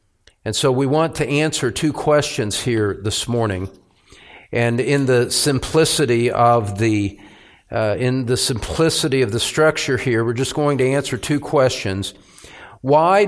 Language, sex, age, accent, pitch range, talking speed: English, male, 50-69, American, 110-145 Hz, 150 wpm